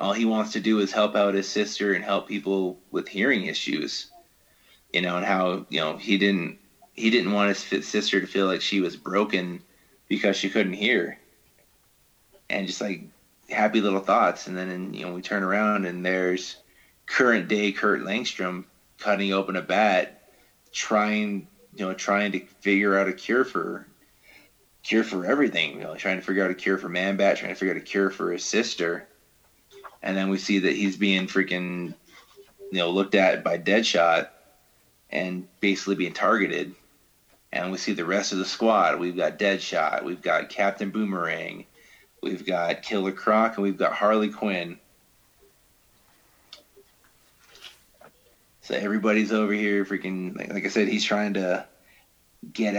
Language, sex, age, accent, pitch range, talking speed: English, male, 20-39, American, 90-105 Hz, 170 wpm